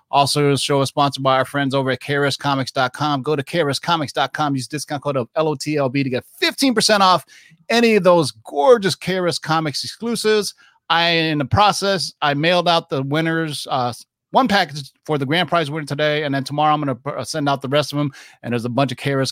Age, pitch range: 30-49, 135-165 Hz